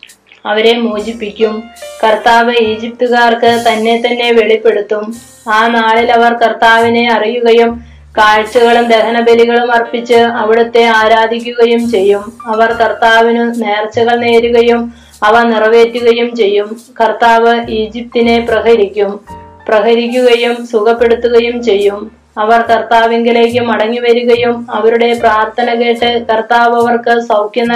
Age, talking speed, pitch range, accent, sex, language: 20-39, 85 wpm, 220-235 Hz, native, female, Malayalam